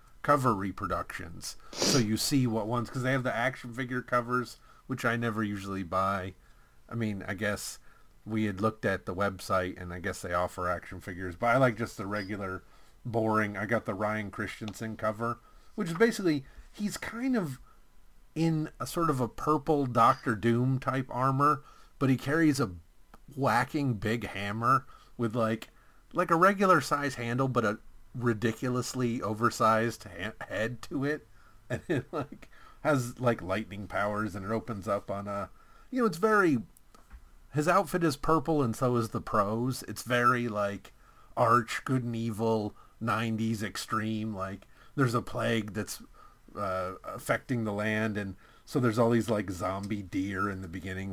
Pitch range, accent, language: 105-130 Hz, American, English